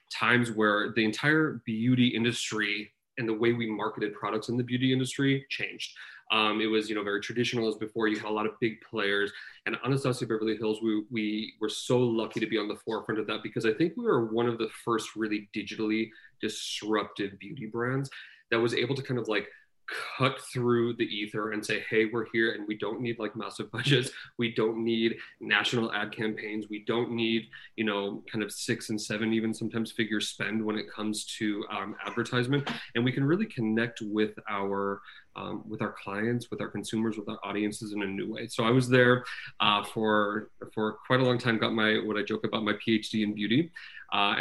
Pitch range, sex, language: 105-120 Hz, male, English